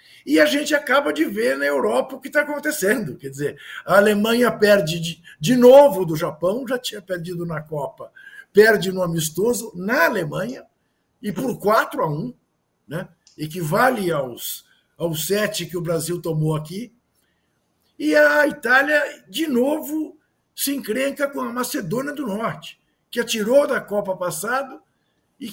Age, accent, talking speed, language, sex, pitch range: 50-69, Brazilian, 155 wpm, Portuguese, male, 180-265 Hz